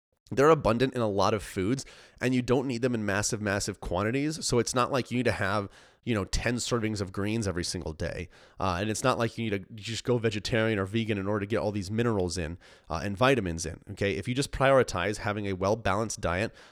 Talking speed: 240 wpm